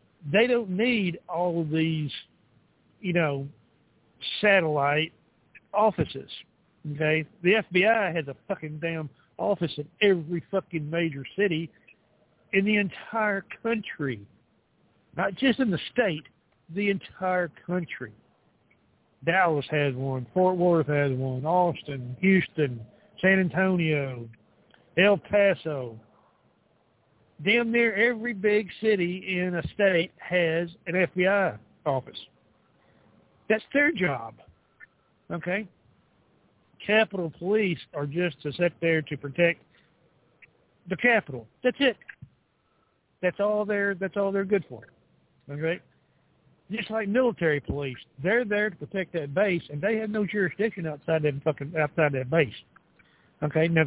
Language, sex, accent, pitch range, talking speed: English, male, American, 150-200 Hz, 120 wpm